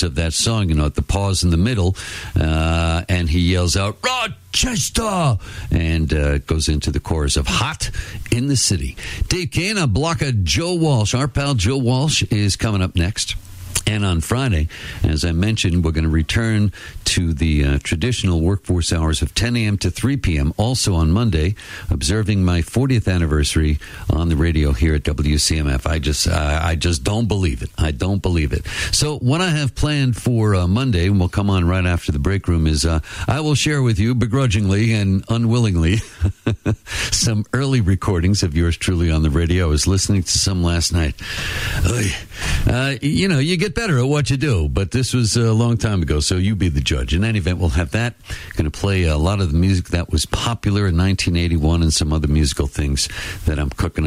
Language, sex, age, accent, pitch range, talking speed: English, male, 60-79, American, 80-110 Hz, 205 wpm